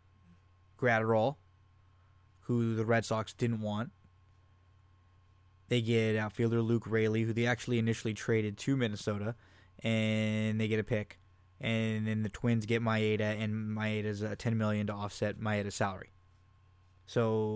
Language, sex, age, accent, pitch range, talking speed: English, male, 20-39, American, 95-115 Hz, 135 wpm